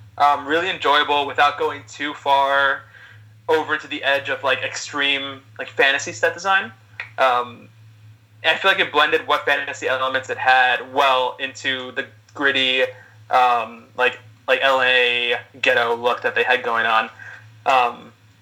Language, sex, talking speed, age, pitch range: English, male, 145 wpm, 20-39, 110-145 Hz